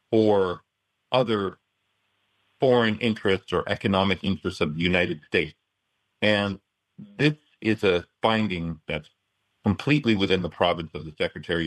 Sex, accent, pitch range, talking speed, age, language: male, American, 85-105 Hz, 125 wpm, 40-59, English